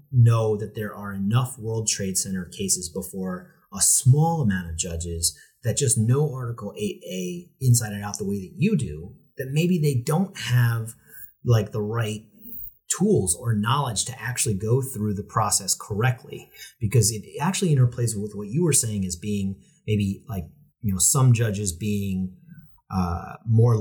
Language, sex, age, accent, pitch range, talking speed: English, male, 30-49, American, 95-125 Hz, 165 wpm